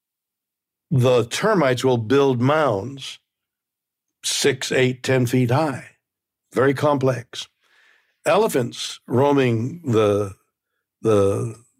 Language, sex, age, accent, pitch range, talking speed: English, male, 60-79, American, 115-150 Hz, 80 wpm